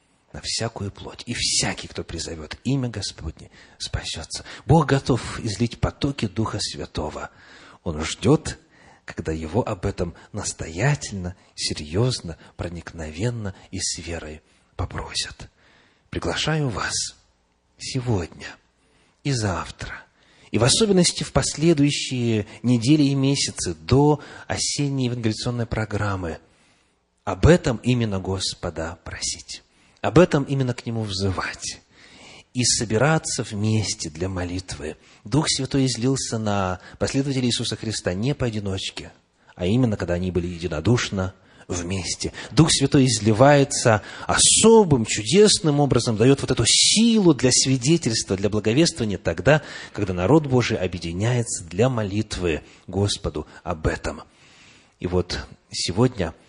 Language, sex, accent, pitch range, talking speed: Russian, male, native, 95-135 Hz, 115 wpm